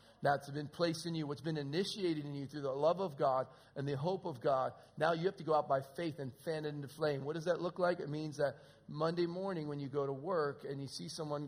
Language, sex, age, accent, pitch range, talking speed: English, male, 40-59, American, 135-165 Hz, 270 wpm